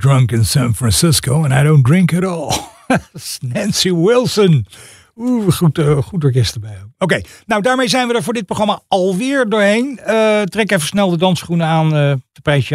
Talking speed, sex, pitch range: 180 wpm, male, 120-180 Hz